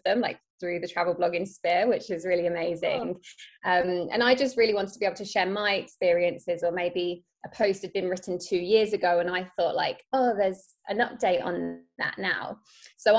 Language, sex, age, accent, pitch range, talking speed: English, female, 20-39, British, 180-225 Hz, 210 wpm